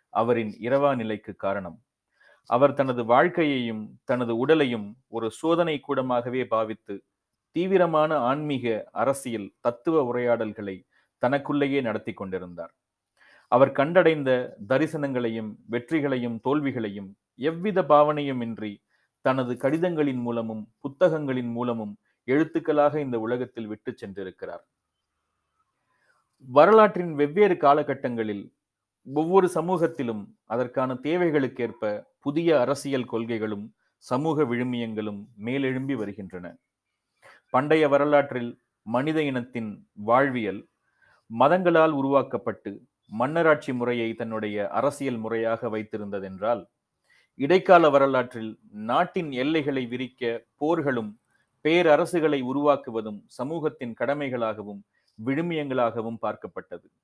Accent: native